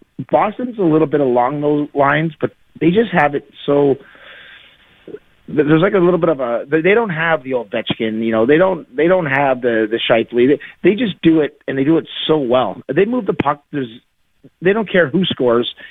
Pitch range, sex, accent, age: 130-155 Hz, male, American, 30-49